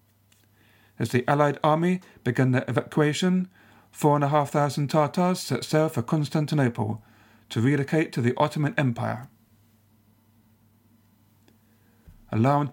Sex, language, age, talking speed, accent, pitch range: male, English, 50-69, 115 wpm, British, 110-155 Hz